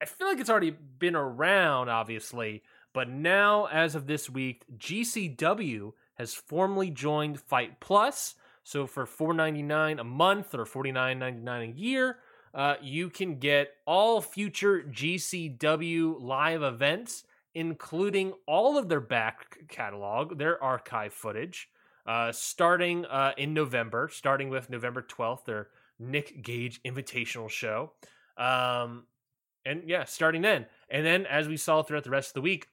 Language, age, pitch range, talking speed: English, 20-39, 125-165 Hz, 140 wpm